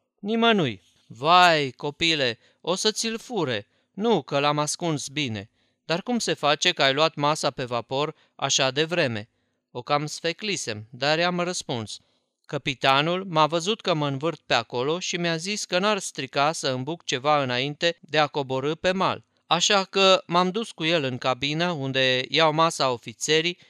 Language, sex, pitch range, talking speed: Romanian, male, 140-175 Hz, 165 wpm